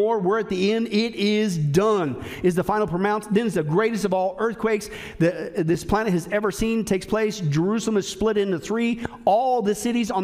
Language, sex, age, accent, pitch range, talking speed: English, male, 40-59, American, 185-230 Hz, 200 wpm